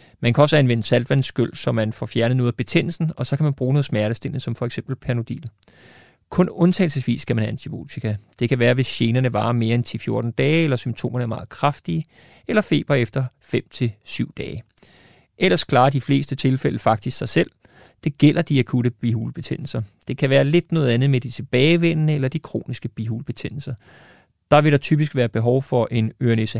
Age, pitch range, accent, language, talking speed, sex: 30-49, 115-140 Hz, native, Danish, 190 wpm, male